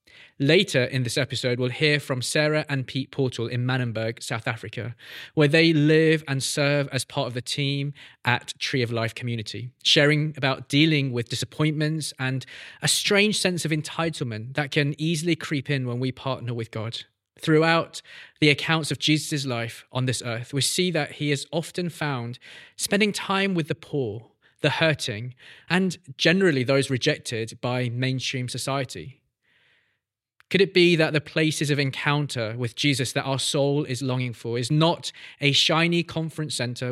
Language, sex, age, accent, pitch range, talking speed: English, male, 20-39, British, 125-150 Hz, 165 wpm